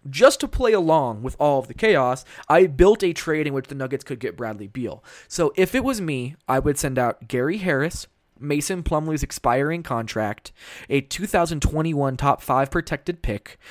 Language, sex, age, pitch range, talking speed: English, male, 20-39, 120-155 Hz, 185 wpm